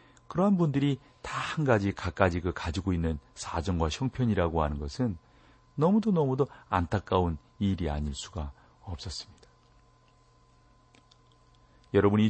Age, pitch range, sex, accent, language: 40-59, 85-115 Hz, male, native, Korean